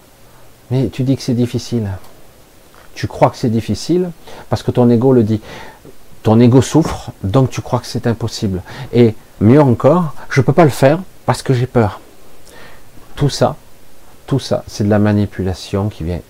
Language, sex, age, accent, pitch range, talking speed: French, male, 50-69, French, 85-120 Hz, 175 wpm